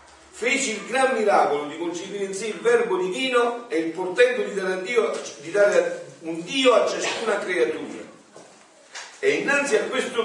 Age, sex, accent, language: 50-69, male, native, Italian